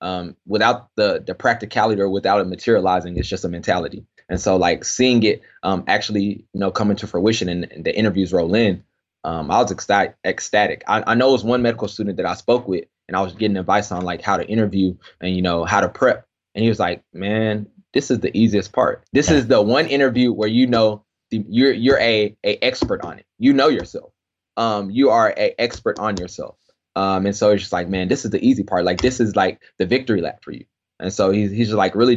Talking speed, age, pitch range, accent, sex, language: 235 wpm, 20-39, 95-115 Hz, American, male, English